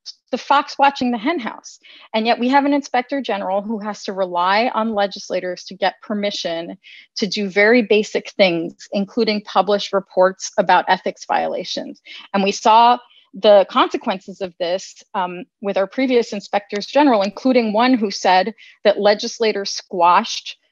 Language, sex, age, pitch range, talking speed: English, female, 30-49, 195-245 Hz, 155 wpm